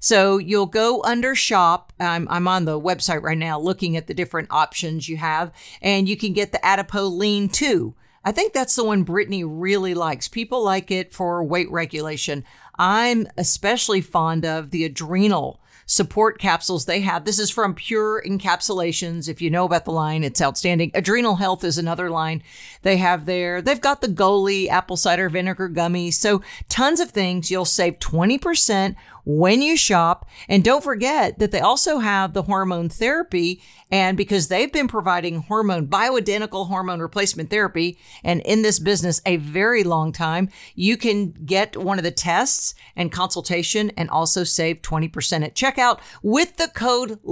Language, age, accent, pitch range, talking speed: English, 50-69, American, 170-215 Hz, 175 wpm